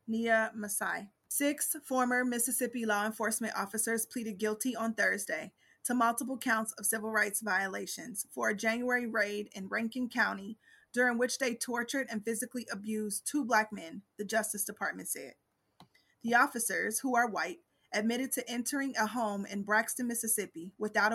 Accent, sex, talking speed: American, female, 155 wpm